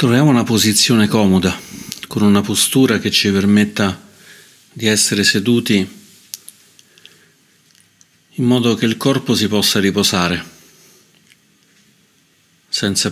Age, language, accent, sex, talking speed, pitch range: 40-59, Italian, native, male, 100 wpm, 95-105 Hz